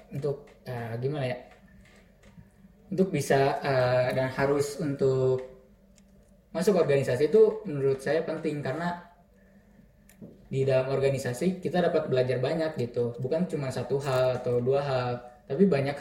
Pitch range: 120-145 Hz